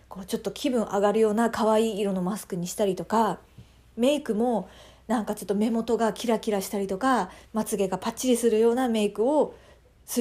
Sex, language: female, Japanese